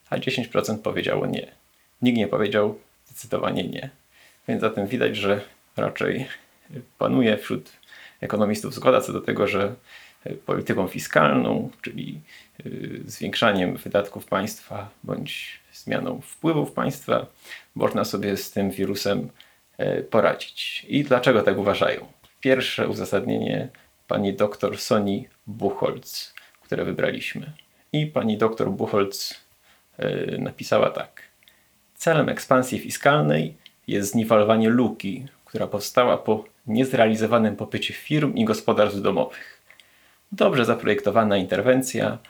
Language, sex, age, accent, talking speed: Polish, male, 30-49, native, 105 wpm